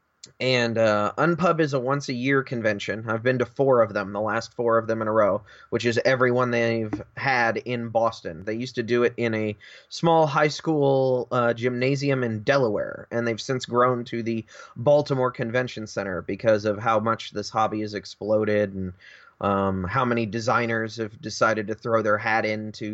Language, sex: English, male